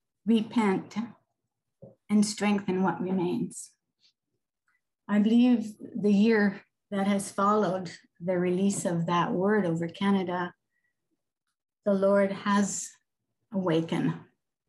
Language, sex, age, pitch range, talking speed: English, female, 50-69, 180-205 Hz, 95 wpm